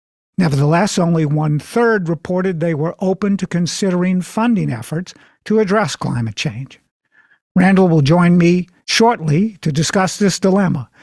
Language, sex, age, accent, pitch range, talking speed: English, male, 50-69, American, 150-190 Hz, 130 wpm